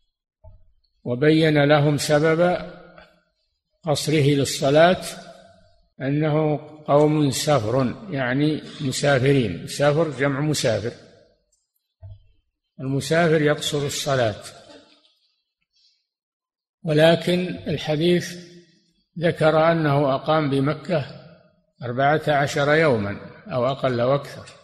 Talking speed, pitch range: 70 wpm, 130-160 Hz